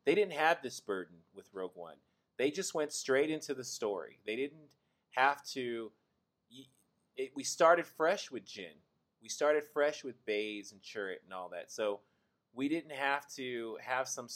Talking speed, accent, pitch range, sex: 175 wpm, American, 110-150 Hz, male